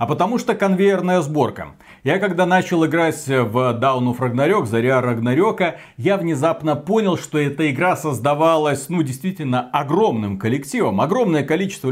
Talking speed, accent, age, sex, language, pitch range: 135 wpm, native, 40-59, male, Russian, 125-170 Hz